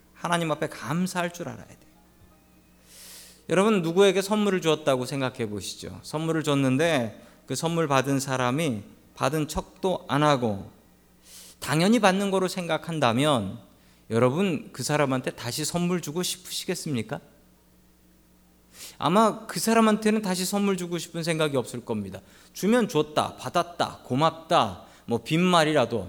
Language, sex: Korean, male